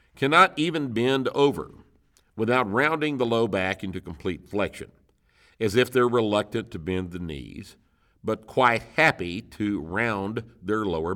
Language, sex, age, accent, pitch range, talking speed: English, male, 50-69, American, 85-120 Hz, 145 wpm